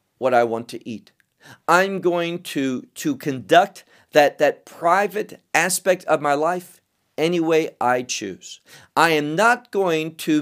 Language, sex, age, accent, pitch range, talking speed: English, male, 50-69, American, 135-205 Hz, 150 wpm